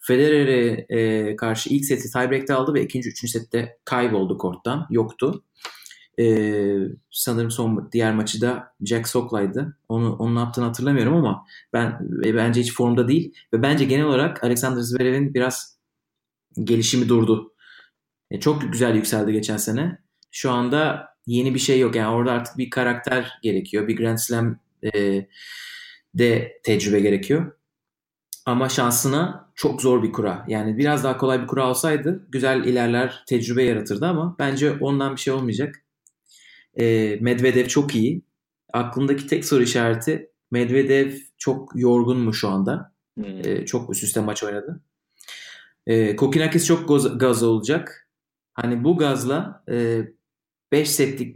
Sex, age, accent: male, 30-49, native